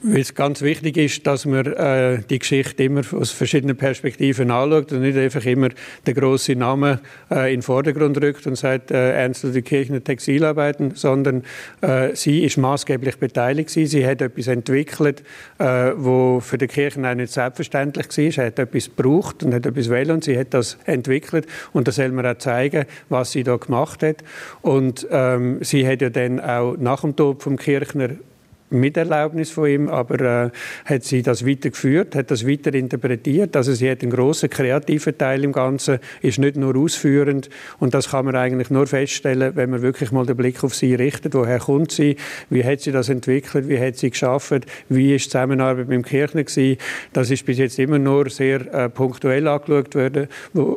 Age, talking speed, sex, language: 50-69, 195 wpm, male, German